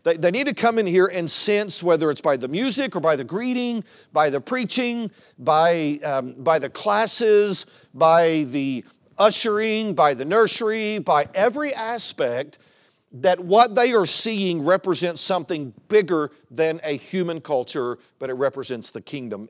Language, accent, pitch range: English, American, 140-195 Hz